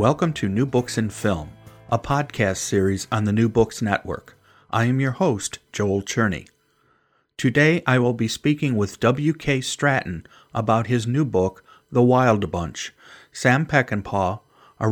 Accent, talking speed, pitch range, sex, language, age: American, 155 wpm, 105-140 Hz, male, English, 40-59